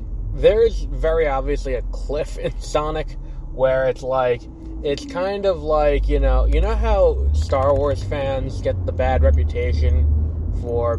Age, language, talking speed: 20-39, English, 145 wpm